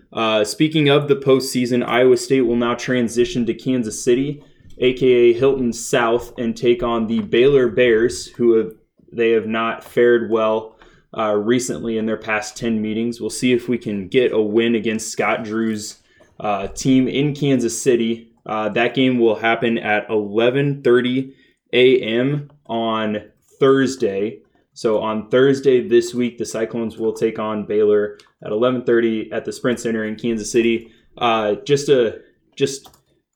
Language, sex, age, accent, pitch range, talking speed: English, male, 20-39, American, 110-125 Hz, 155 wpm